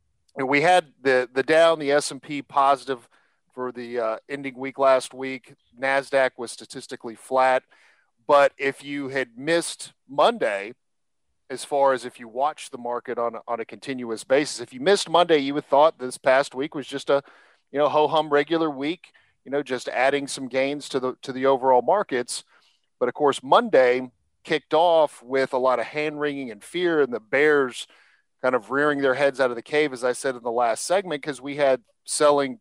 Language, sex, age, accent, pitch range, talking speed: English, male, 40-59, American, 125-140 Hz, 200 wpm